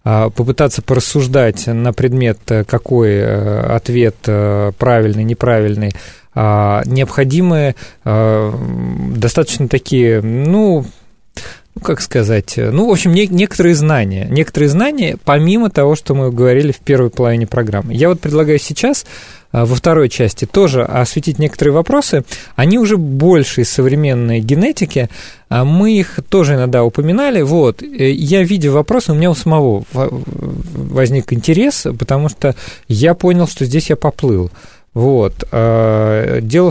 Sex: male